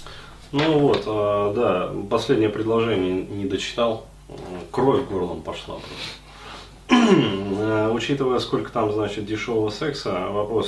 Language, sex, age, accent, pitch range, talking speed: Russian, male, 20-39, native, 100-140 Hz, 100 wpm